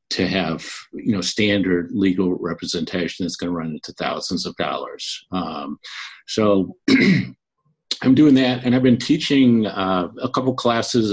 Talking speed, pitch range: 150 wpm, 90-110 Hz